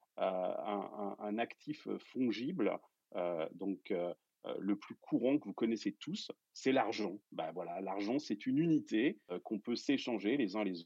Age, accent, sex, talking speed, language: 40-59, French, male, 170 wpm, French